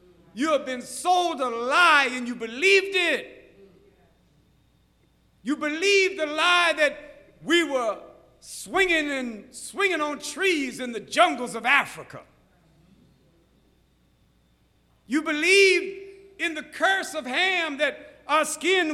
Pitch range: 255-335 Hz